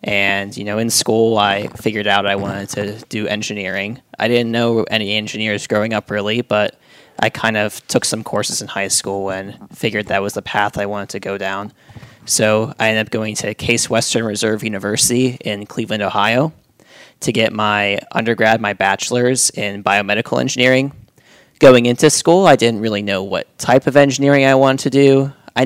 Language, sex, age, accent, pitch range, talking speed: English, male, 20-39, American, 105-125 Hz, 185 wpm